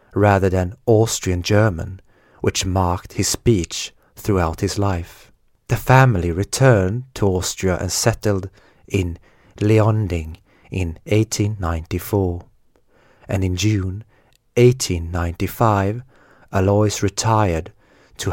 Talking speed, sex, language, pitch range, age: 95 wpm, male, Swedish, 90-110 Hz, 30-49